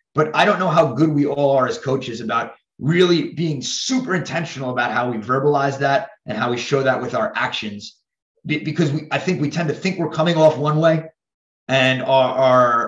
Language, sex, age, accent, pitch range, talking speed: English, male, 30-49, American, 115-150 Hz, 215 wpm